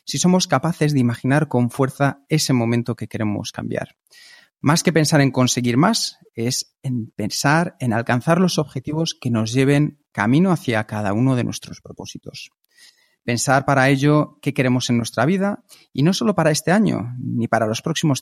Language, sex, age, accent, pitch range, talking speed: Spanish, male, 40-59, Spanish, 125-165 Hz, 175 wpm